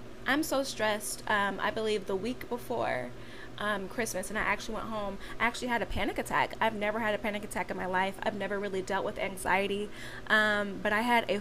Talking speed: 220 wpm